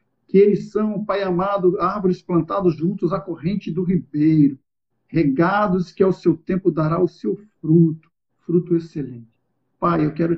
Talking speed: 150 wpm